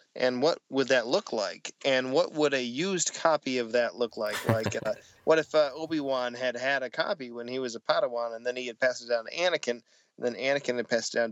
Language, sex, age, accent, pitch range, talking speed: English, male, 20-39, American, 115-130 Hz, 250 wpm